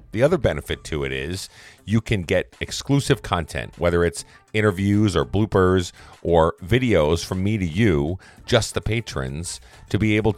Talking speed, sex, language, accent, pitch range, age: 160 wpm, male, English, American, 80-110 Hz, 40-59